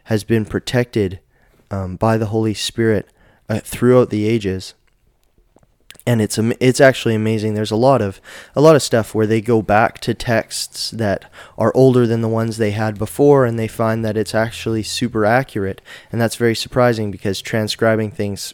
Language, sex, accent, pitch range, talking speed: English, male, American, 105-120 Hz, 180 wpm